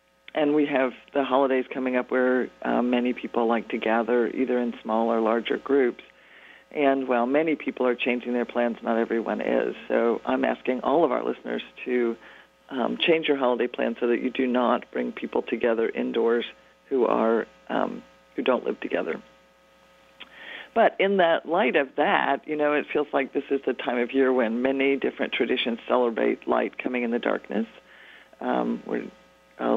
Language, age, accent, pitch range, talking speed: English, 40-59, American, 110-130 Hz, 180 wpm